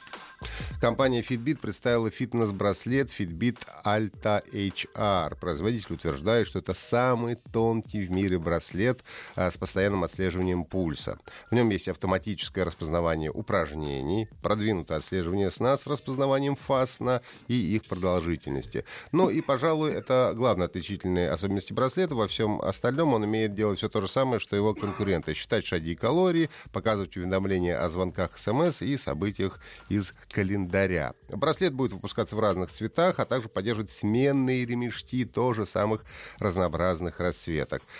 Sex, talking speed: male, 135 wpm